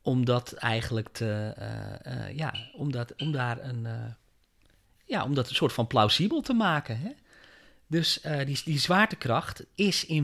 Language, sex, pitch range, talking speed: Dutch, male, 115-170 Hz, 170 wpm